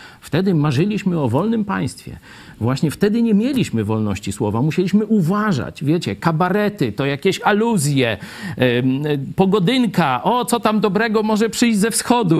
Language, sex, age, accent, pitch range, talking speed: Polish, male, 50-69, native, 135-205 Hz, 130 wpm